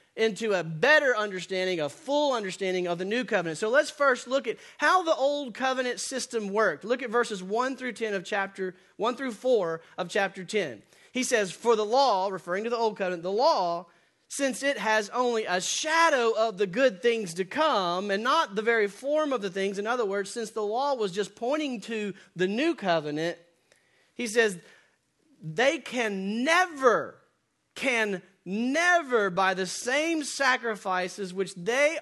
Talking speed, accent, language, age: 175 wpm, American, English, 30-49